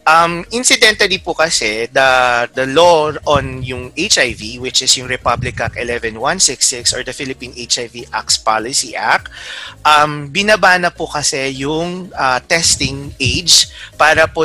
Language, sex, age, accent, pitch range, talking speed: Filipino, male, 30-49, native, 125-155 Hz, 140 wpm